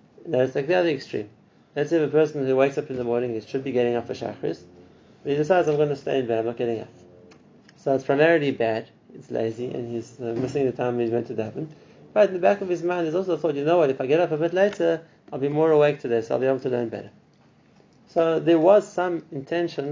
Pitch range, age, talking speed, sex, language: 125-160 Hz, 30-49, 260 wpm, male, English